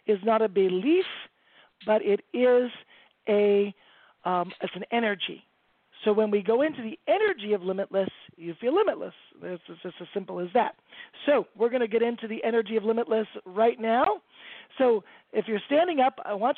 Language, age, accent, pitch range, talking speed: English, 40-59, American, 190-245 Hz, 175 wpm